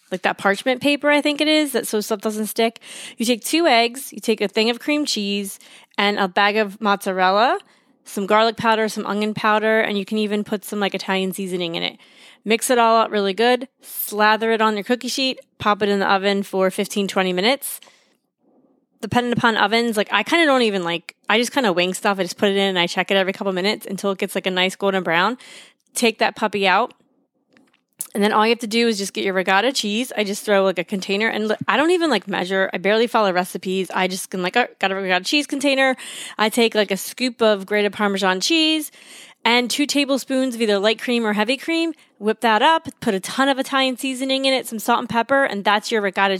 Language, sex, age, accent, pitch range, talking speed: English, female, 20-39, American, 200-260 Hz, 235 wpm